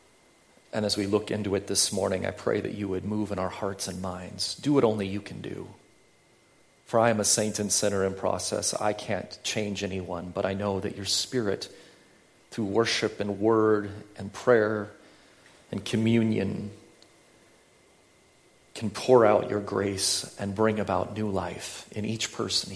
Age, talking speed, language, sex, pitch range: 40-59, 170 wpm, English, male, 100-115 Hz